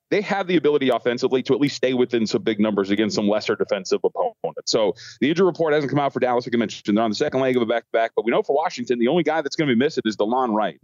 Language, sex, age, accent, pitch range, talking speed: English, male, 30-49, American, 110-140 Hz, 305 wpm